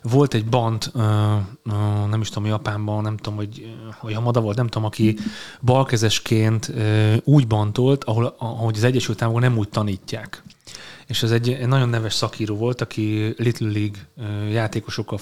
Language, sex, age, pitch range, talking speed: Hungarian, male, 30-49, 105-120 Hz, 140 wpm